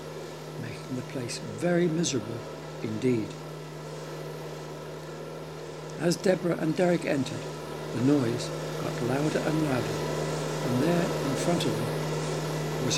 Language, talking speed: English, 105 wpm